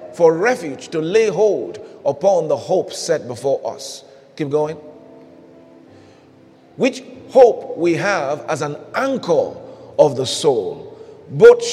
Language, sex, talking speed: English, male, 125 wpm